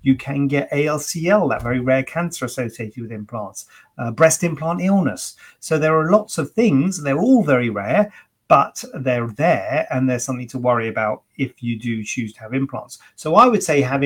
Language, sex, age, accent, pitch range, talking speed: English, male, 30-49, British, 125-170 Hz, 195 wpm